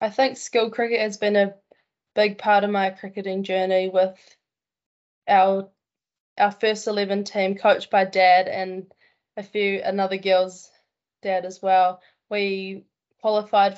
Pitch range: 190-205 Hz